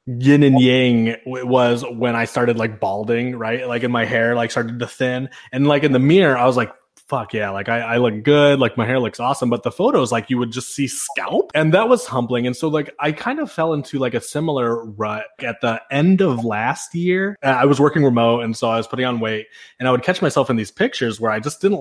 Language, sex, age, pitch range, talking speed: English, male, 20-39, 115-140 Hz, 255 wpm